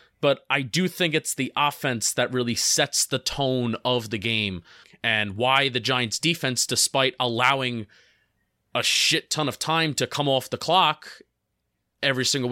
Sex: male